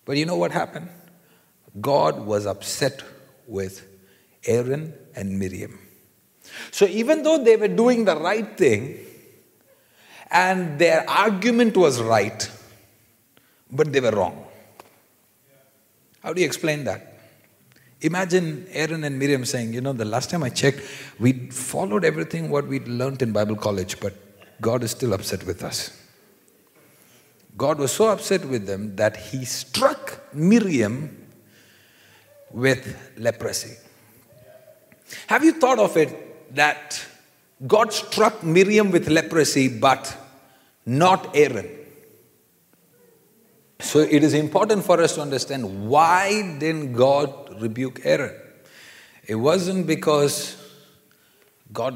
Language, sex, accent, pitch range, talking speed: English, male, Indian, 115-170 Hz, 120 wpm